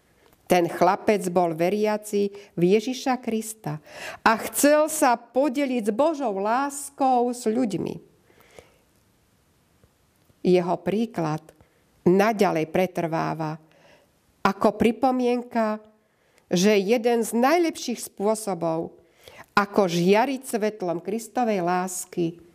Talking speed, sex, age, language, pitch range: 85 wpm, female, 50-69, Slovak, 175-240 Hz